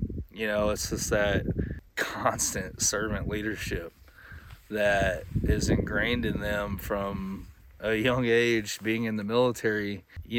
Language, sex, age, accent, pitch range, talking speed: English, male, 20-39, American, 100-115 Hz, 125 wpm